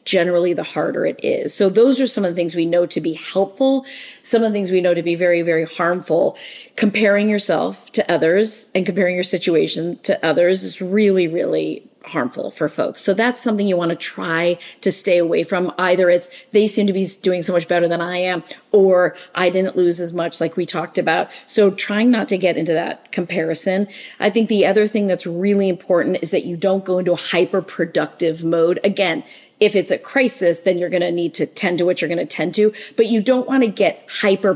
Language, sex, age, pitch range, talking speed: English, female, 40-59, 170-210 Hz, 220 wpm